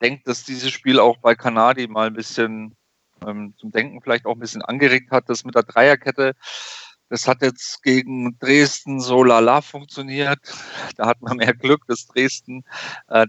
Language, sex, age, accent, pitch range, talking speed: German, male, 40-59, German, 115-130 Hz, 180 wpm